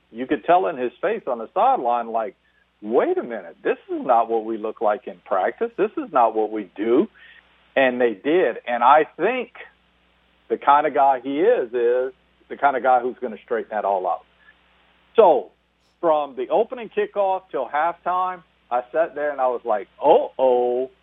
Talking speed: 195 wpm